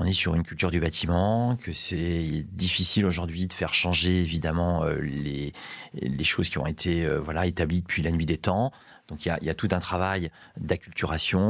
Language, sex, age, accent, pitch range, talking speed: French, male, 30-49, French, 80-95 Hz, 195 wpm